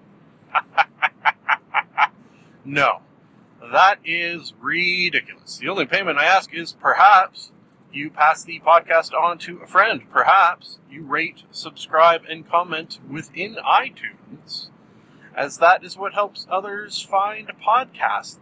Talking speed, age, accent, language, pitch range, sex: 115 wpm, 30-49, American, English, 155-195 Hz, male